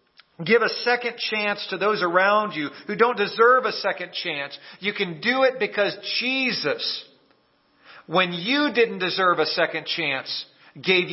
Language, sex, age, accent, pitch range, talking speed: English, male, 40-59, American, 180-235 Hz, 150 wpm